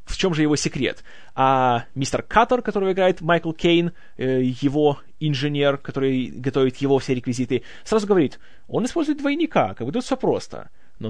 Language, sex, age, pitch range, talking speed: Russian, male, 20-39, 130-170 Hz, 155 wpm